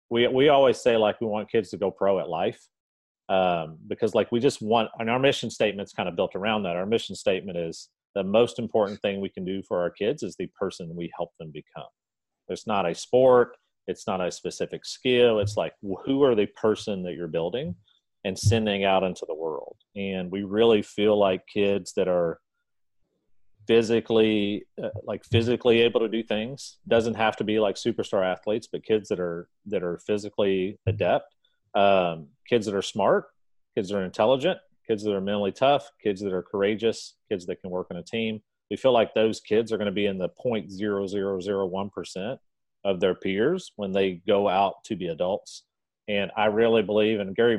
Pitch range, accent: 95-115 Hz, American